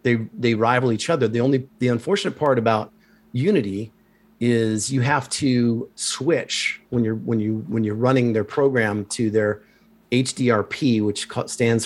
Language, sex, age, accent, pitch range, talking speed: English, male, 40-59, American, 105-120 Hz, 155 wpm